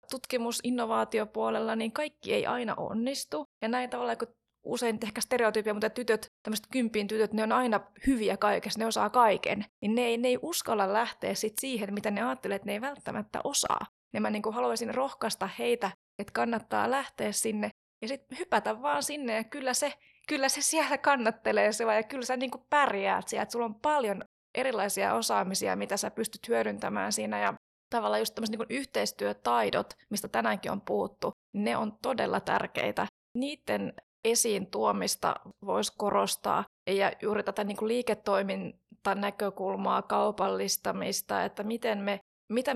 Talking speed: 160 wpm